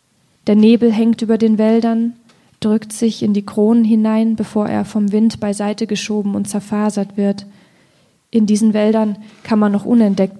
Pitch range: 195-220 Hz